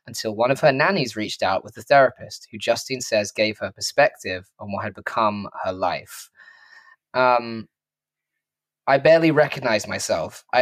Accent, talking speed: British, 160 wpm